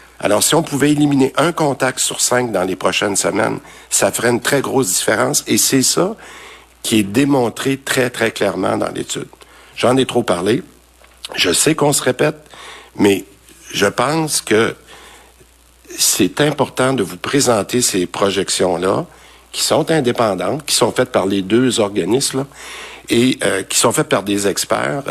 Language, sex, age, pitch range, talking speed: French, male, 60-79, 95-125 Hz, 165 wpm